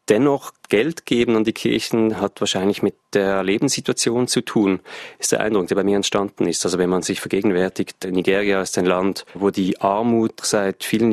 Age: 20-39